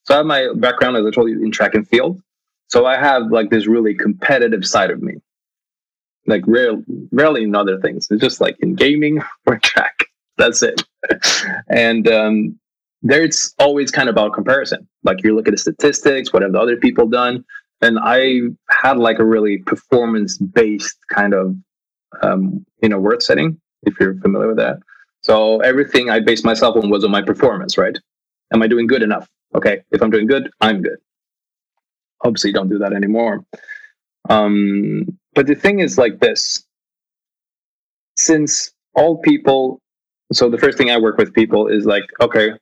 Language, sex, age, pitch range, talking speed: Swedish, male, 20-39, 110-140 Hz, 180 wpm